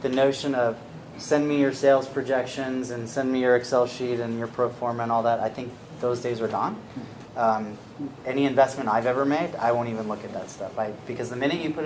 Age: 30-49